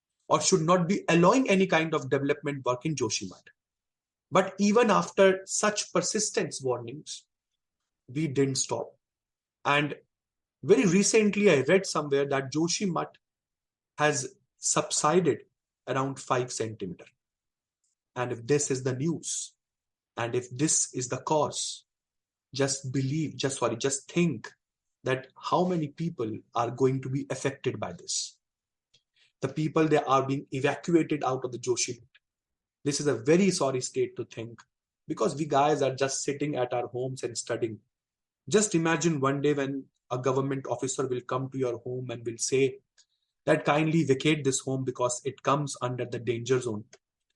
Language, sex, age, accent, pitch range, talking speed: English, male, 30-49, Indian, 130-160 Hz, 155 wpm